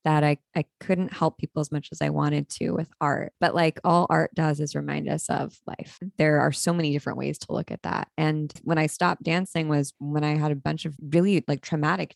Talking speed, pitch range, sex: 240 wpm, 140-160 Hz, female